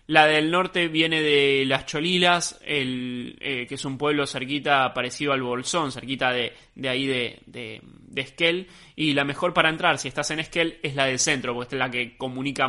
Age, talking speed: 20-39, 195 wpm